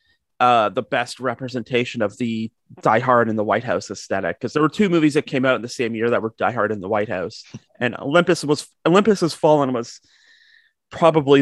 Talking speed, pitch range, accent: 215 wpm, 120-170 Hz, American